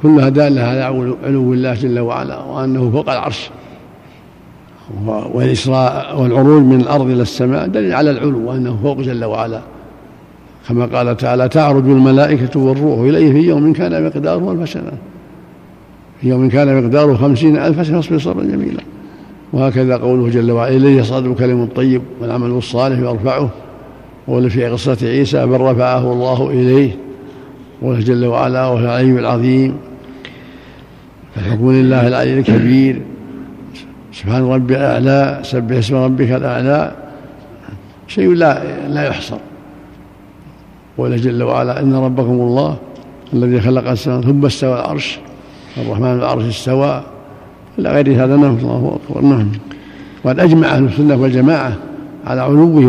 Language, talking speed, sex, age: Arabic, 130 wpm, male, 60-79